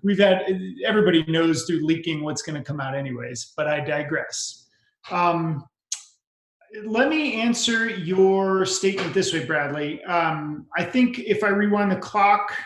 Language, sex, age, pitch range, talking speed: English, male, 40-59, 165-200 Hz, 145 wpm